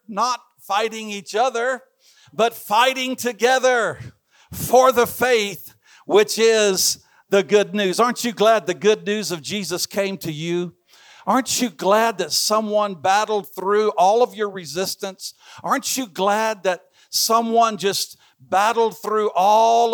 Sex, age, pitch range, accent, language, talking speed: male, 50-69, 195-230 Hz, American, English, 140 wpm